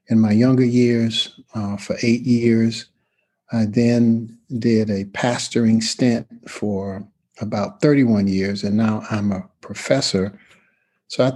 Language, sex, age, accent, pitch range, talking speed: English, male, 50-69, American, 105-125 Hz, 130 wpm